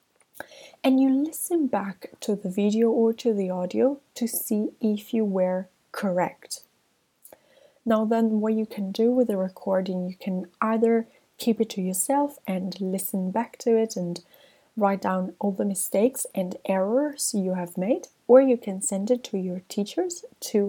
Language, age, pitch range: English, 20-39, 185-230 Hz